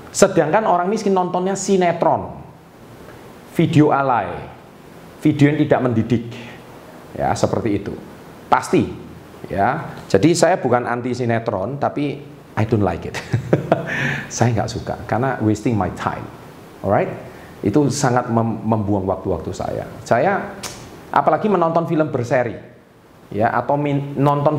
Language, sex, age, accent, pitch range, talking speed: Indonesian, male, 40-59, native, 110-165 Hz, 115 wpm